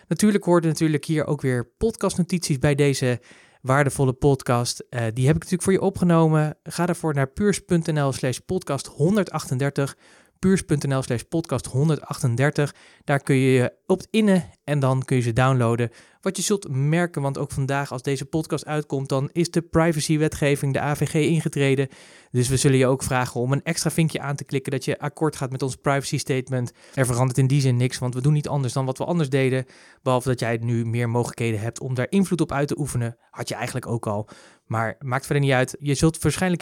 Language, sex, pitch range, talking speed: Dutch, male, 125-155 Hz, 195 wpm